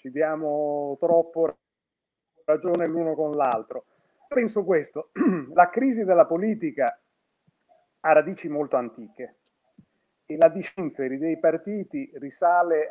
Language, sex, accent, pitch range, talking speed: Italian, male, native, 150-210 Hz, 105 wpm